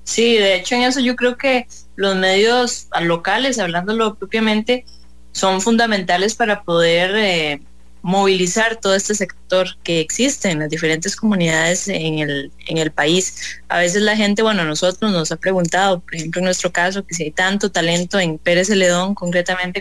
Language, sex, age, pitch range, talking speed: English, female, 20-39, 165-200 Hz, 170 wpm